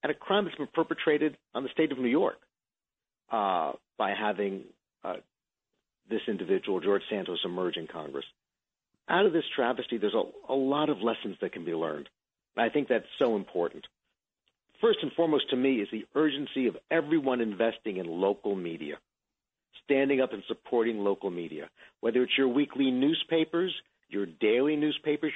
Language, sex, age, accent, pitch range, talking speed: English, male, 50-69, American, 115-150 Hz, 170 wpm